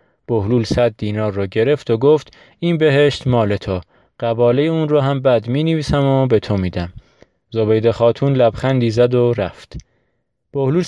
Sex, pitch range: male, 110-135 Hz